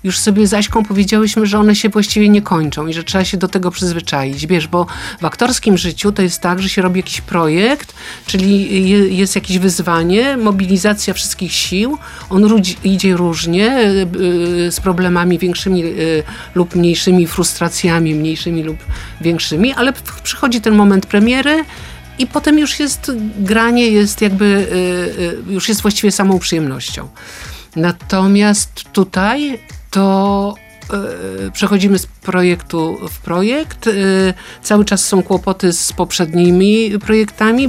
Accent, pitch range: native, 170-210 Hz